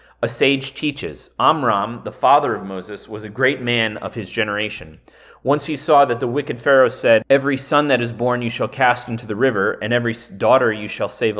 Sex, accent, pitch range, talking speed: male, American, 115-135 Hz, 210 wpm